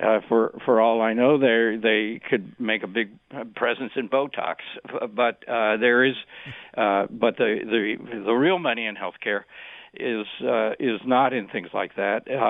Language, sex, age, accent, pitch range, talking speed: English, male, 60-79, American, 105-120 Hz, 175 wpm